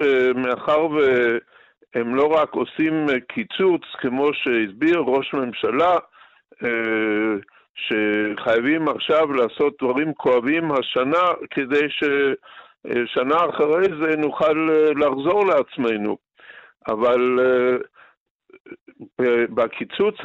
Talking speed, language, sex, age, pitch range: 75 wpm, Hebrew, male, 60-79, 125-170 Hz